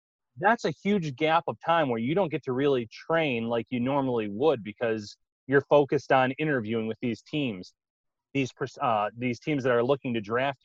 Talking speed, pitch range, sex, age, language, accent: 190 wpm, 125-160 Hz, male, 30-49, English, American